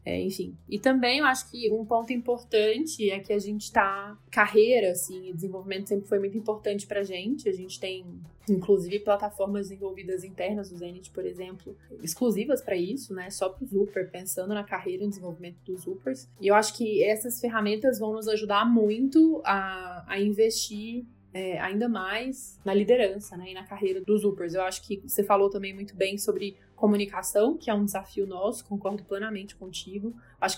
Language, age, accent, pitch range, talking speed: Portuguese, 20-39, Brazilian, 195-215 Hz, 185 wpm